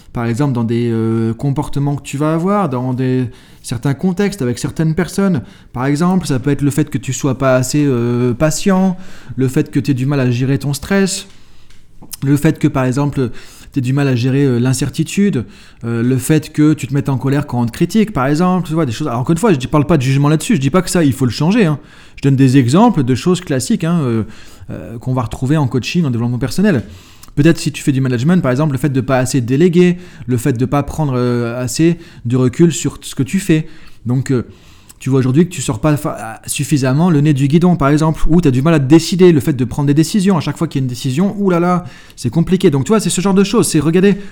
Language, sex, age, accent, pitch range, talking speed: French, male, 20-39, French, 130-170 Hz, 265 wpm